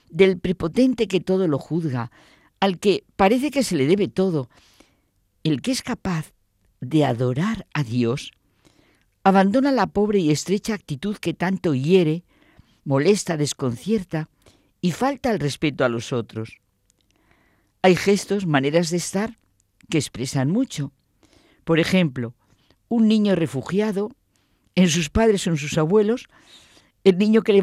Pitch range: 135-195 Hz